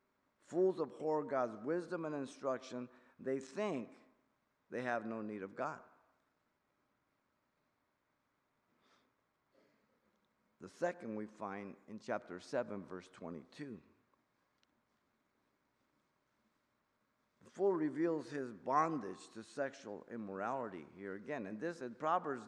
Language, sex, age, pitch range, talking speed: English, male, 50-69, 115-150 Hz, 100 wpm